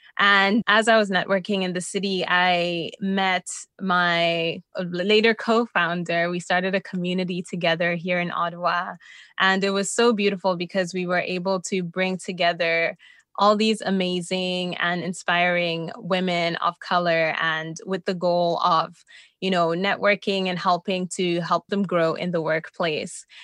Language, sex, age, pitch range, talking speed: English, female, 20-39, 180-205 Hz, 150 wpm